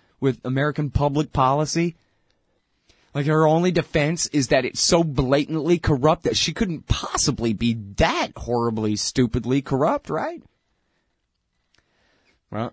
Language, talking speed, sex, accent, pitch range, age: English, 120 wpm, male, American, 115-170 Hz, 30-49